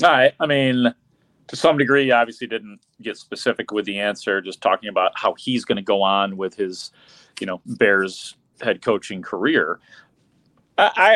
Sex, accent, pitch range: male, American, 105-135 Hz